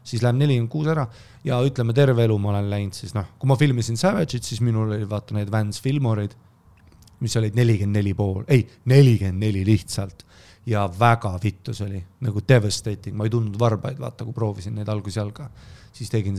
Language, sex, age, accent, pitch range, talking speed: English, male, 30-49, Finnish, 100-120 Hz, 175 wpm